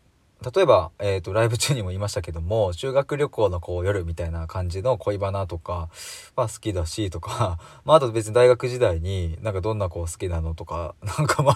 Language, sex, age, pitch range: Japanese, male, 20-39, 90-115 Hz